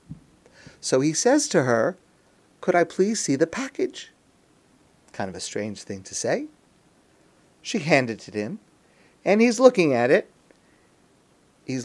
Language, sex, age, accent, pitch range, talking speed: English, male, 50-69, American, 150-225 Hz, 145 wpm